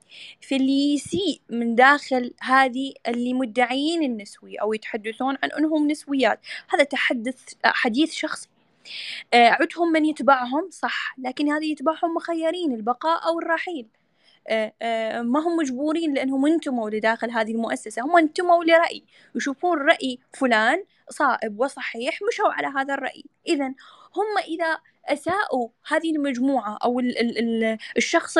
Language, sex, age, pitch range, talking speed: Arabic, female, 10-29, 240-320 Hz, 120 wpm